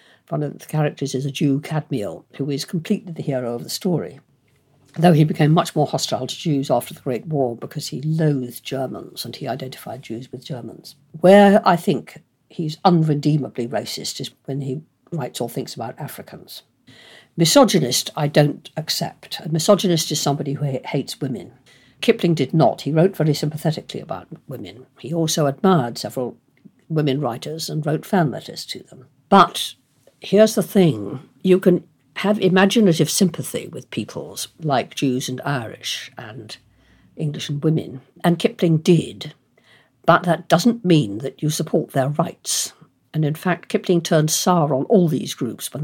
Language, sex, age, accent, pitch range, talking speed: English, female, 60-79, British, 135-175 Hz, 165 wpm